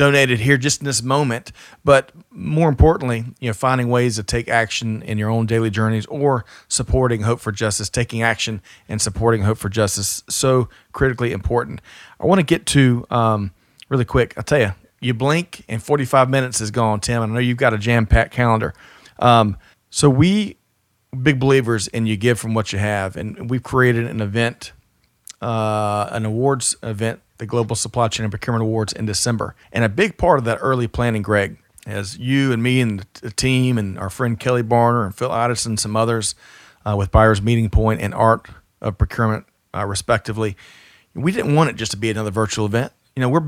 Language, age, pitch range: English, 40-59, 110-130 Hz